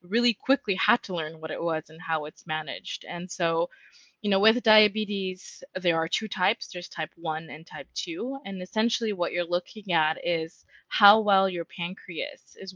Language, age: English, 20-39